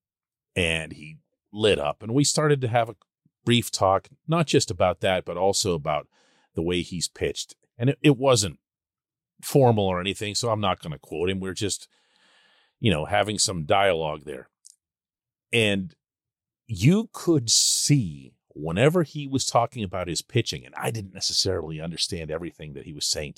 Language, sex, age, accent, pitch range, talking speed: English, male, 40-59, American, 95-140 Hz, 170 wpm